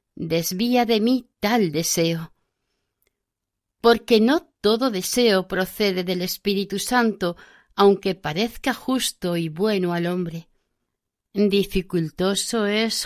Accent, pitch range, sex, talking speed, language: Spanish, 185-245 Hz, female, 100 wpm, Spanish